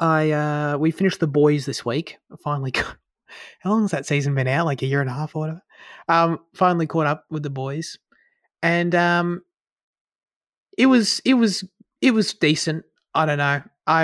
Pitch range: 120-170 Hz